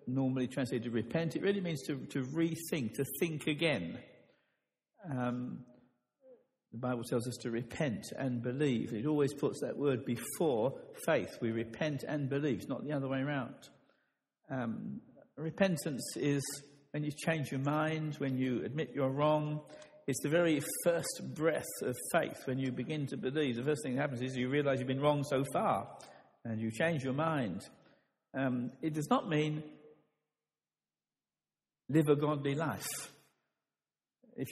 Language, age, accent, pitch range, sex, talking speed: English, 60-79, British, 130-155 Hz, male, 160 wpm